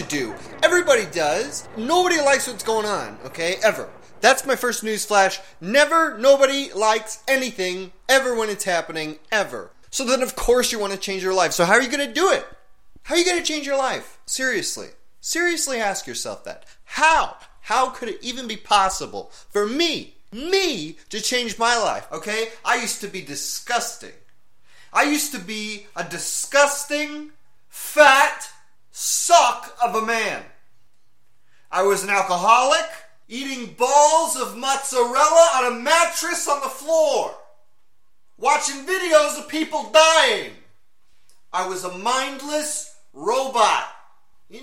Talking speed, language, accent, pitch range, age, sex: 150 wpm, English, American, 220-315 Hz, 30-49, male